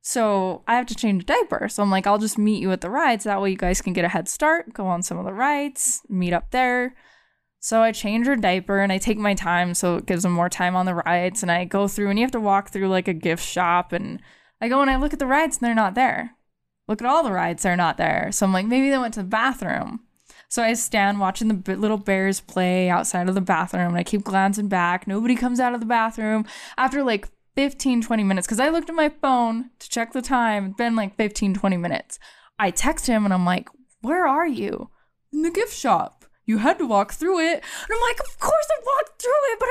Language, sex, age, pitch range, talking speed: English, female, 10-29, 195-290 Hz, 260 wpm